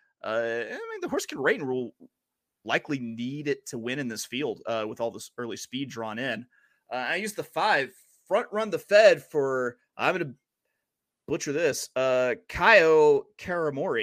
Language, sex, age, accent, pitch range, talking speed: English, male, 30-49, American, 120-160 Hz, 180 wpm